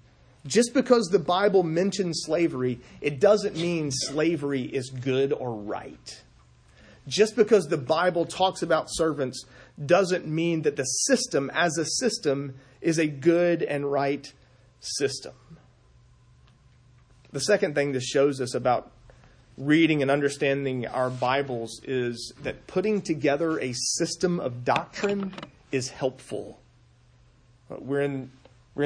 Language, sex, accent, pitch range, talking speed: English, male, American, 125-170 Hz, 125 wpm